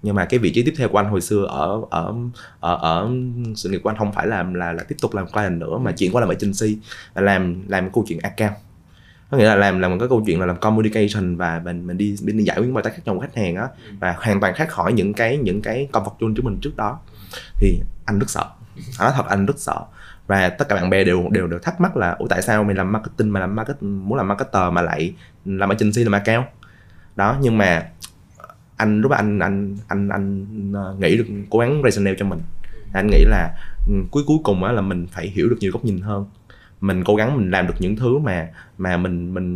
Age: 20-39